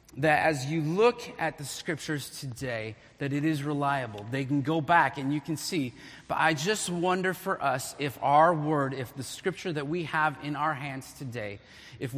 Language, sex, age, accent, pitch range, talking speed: English, male, 30-49, American, 130-165 Hz, 195 wpm